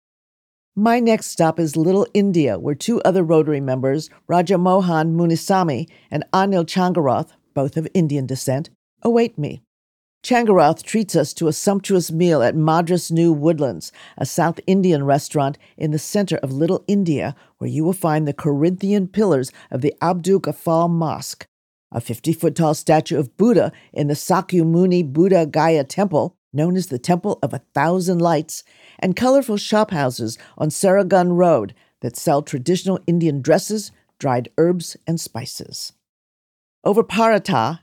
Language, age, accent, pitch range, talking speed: English, 50-69, American, 145-185 Hz, 145 wpm